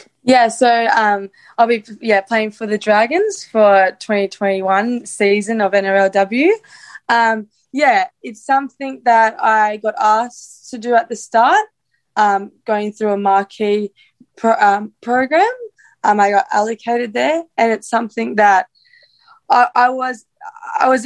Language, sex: English, female